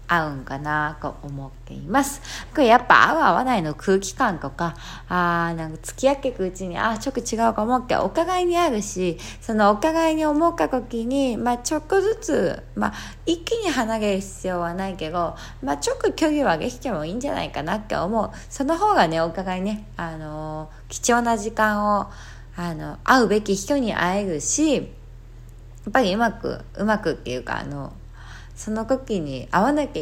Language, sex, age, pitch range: Japanese, female, 20-39, 160-245 Hz